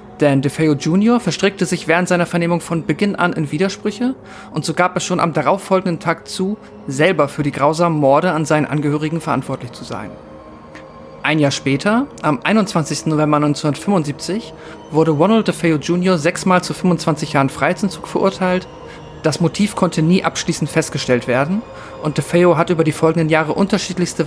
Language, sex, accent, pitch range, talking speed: German, male, German, 150-180 Hz, 160 wpm